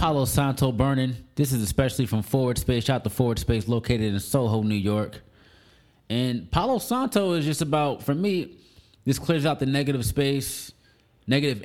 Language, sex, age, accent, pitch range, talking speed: English, male, 20-39, American, 115-140 Hz, 170 wpm